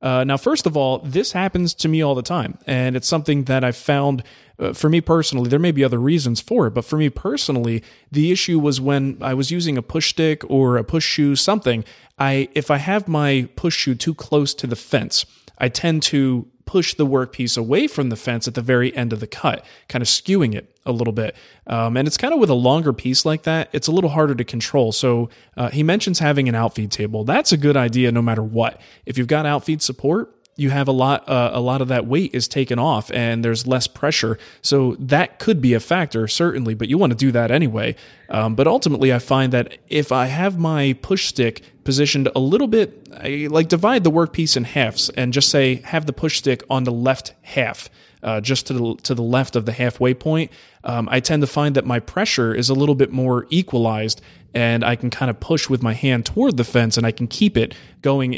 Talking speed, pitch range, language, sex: 235 wpm, 120-150 Hz, English, male